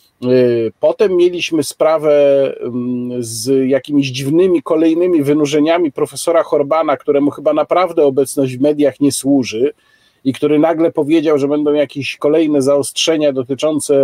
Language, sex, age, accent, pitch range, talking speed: Polish, male, 40-59, native, 140-200 Hz, 120 wpm